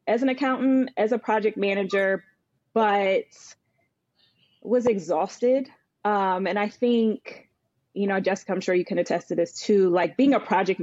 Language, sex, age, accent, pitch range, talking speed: English, female, 20-39, American, 185-220 Hz, 160 wpm